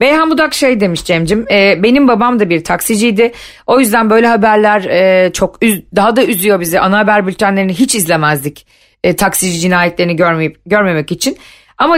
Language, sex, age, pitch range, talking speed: Turkish, female, 40-59, 180-245 Hz, 145 wpm